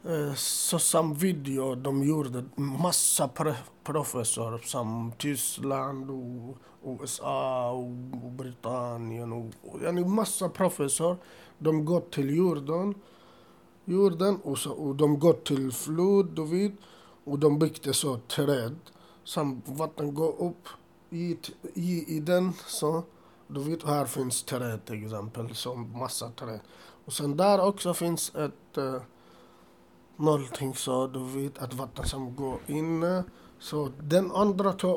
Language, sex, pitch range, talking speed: Swedish, male, 130-170 Hz, 140 wpm